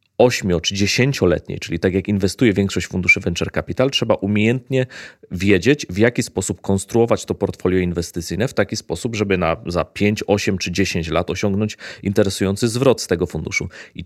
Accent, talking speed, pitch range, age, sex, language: native, 165 wpm, 95-115 Hz, 30-49, male, Polish